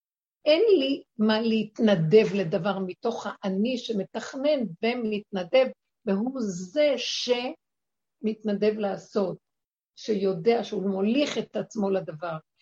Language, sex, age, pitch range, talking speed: Hebrew, female, 60-79, 195-240 Hz, 95 wpm